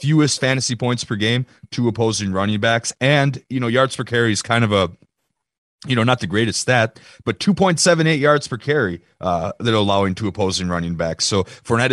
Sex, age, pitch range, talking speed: male, 30-49, 95-130 Hz, 200 wpm